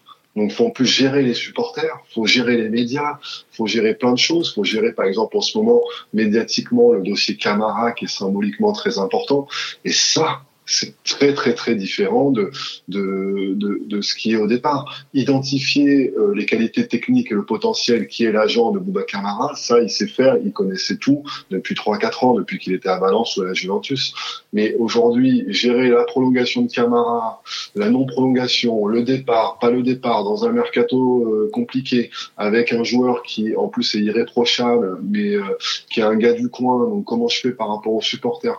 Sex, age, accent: male, 20-39, French